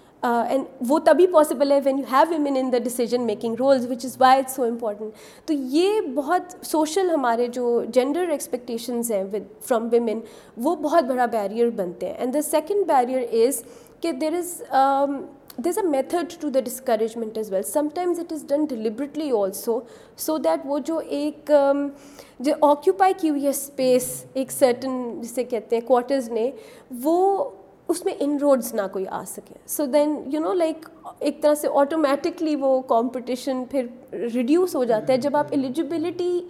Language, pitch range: Urdu, 235-295 Hz